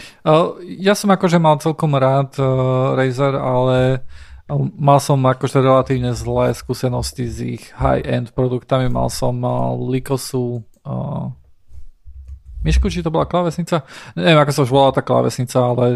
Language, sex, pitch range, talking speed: Slovak, male, 120-135 Hz, 145 wpm